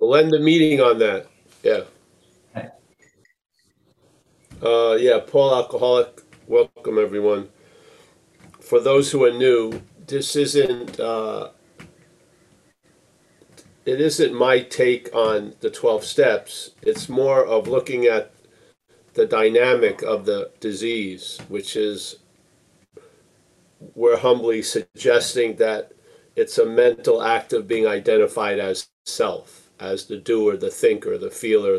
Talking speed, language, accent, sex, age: 115 wpm, English, American, male, 40-59